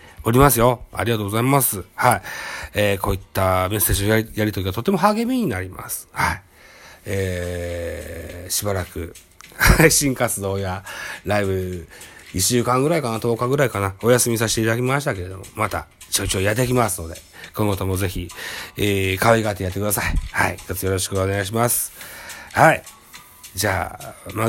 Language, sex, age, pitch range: Japanese, male, 40-59, 95-120 Hz